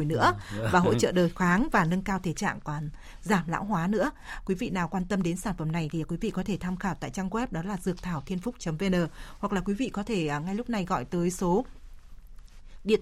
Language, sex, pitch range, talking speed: Vietnamese, female, 170-210 Hz, 235 wpm